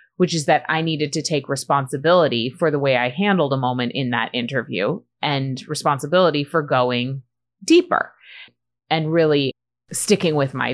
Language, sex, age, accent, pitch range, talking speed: English, female, 30-49, American, 135-190 Hz, 155 wpm